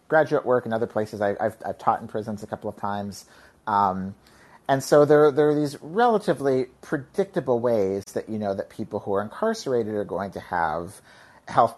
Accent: American